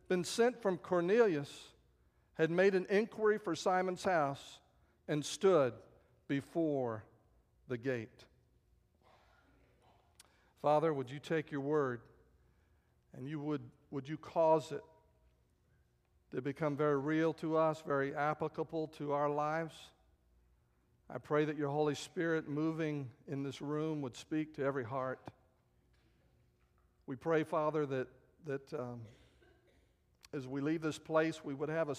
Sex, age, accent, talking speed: male, 50-69, American, 130 wpm